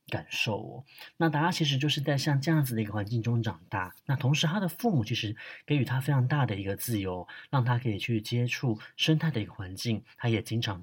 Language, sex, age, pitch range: Chinese, male, 30-49, 110-150 Hz